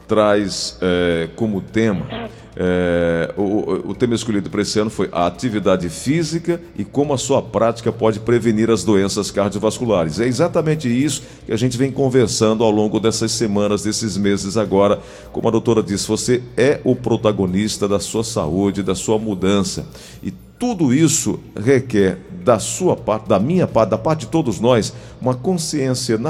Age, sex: 50-69, male